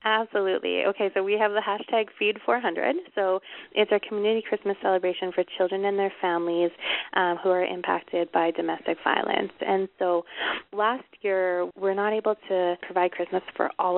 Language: English